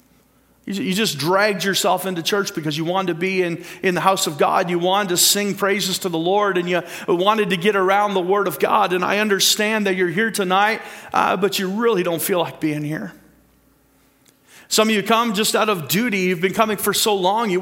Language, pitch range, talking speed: English, 165-205 Hz, 225 wpm